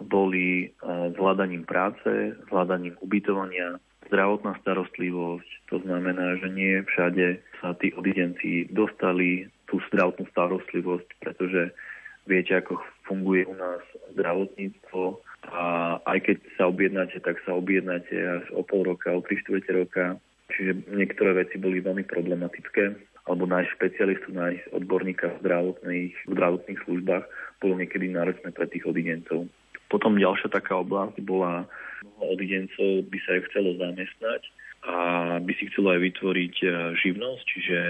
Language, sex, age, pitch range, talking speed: Slovak, male, 30-49, 90-95 Hz, 130 wpm